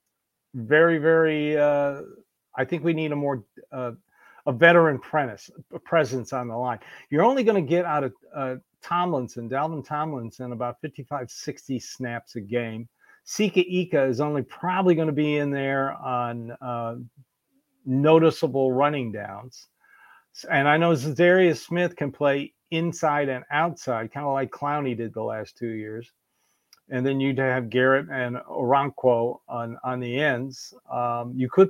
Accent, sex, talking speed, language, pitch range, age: American, male, 155 wpm, English, 125-160 Hz, 50-69